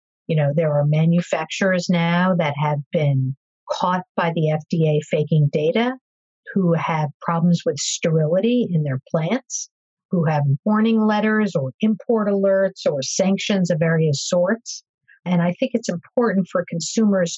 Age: 50-69